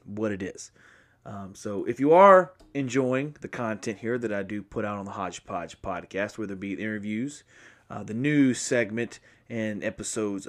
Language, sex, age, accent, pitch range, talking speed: English, male, 20-39, American, 110-140 Hz, 175 wpm